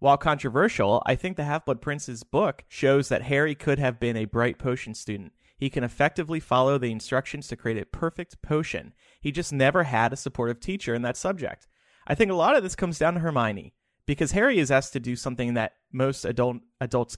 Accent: American